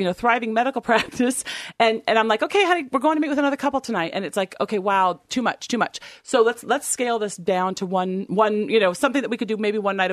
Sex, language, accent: female, English, American